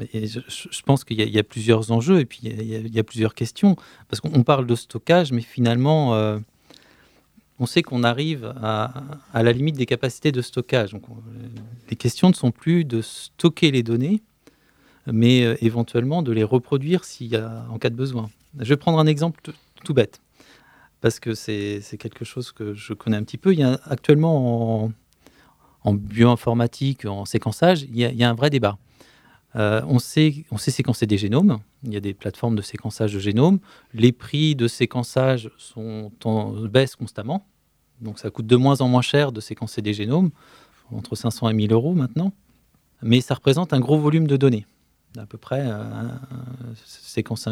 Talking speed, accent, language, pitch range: 200 wpm, French, French, 110-135 Hz